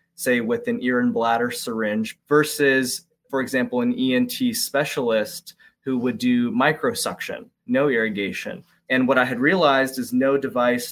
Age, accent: 20-39, American